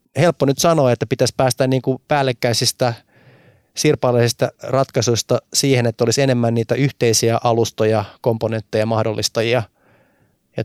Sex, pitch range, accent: male, 110-125 Hz, native